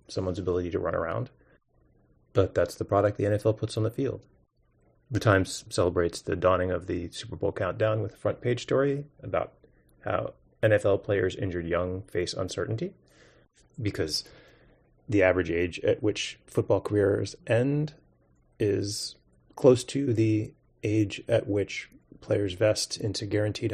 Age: 30-49